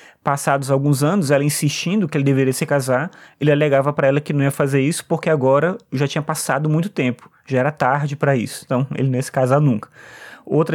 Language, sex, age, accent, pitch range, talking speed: Portuguese, male, 20-39, Brazilian, 140-165 Hz, 220 wpm